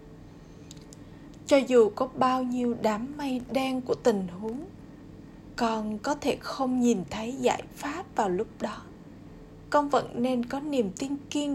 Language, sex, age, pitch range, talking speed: Vietnamese, female, 20-39, 220-260 Hz, 150 wpm